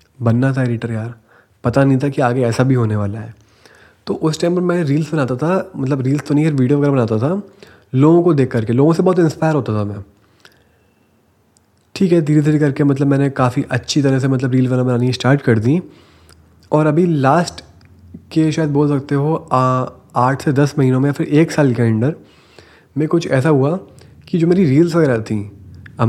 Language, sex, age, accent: Hindi, male, 30-49, native